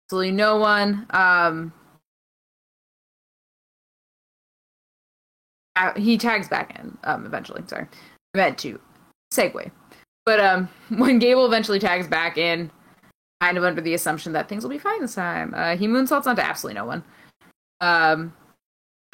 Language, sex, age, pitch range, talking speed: English, female, 20-39, 170-210 Hz, 135 wpm